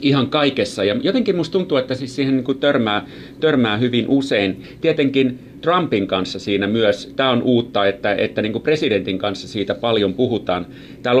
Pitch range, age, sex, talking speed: 105-130 Hz, 40-59, male, 170 wpm